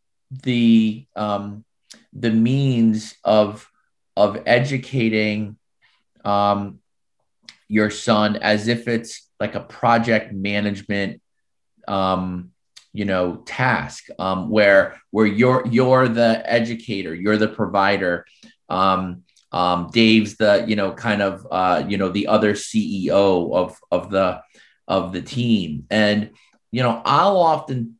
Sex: male